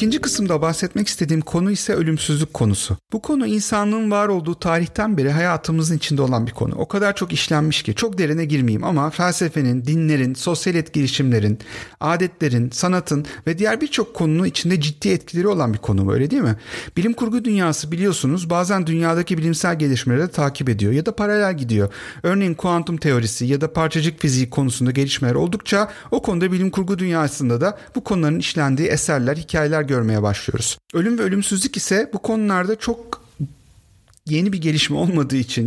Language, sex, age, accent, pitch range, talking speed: Turkish, male, 40-59, native, 135-185 Hz, 160 wpm